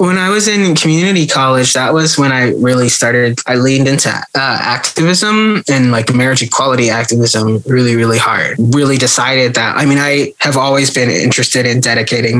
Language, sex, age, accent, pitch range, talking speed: English, male, 20-39, American, 115-135 Hz, 180 wpm